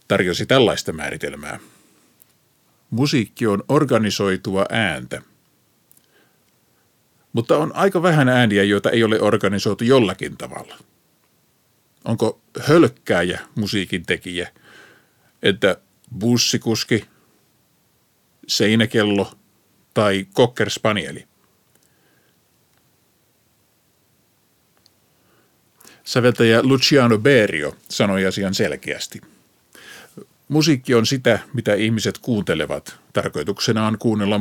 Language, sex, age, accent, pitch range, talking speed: Finnish, male, 50-69, native, 100-120 Hz, 75 wpm